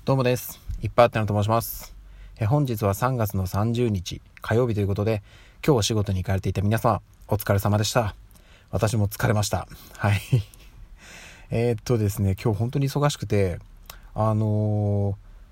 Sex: male